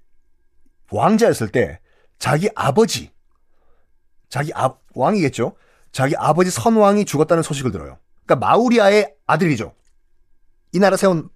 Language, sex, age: Korean, male, 40-59